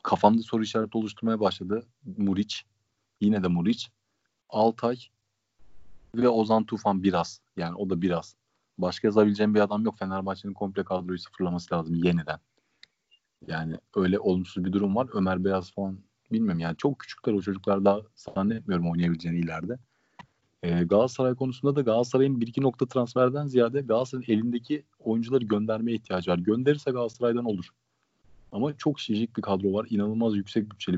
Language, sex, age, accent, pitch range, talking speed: Turkish, male, 40-59, native, 95-120 Hz, 145 wpm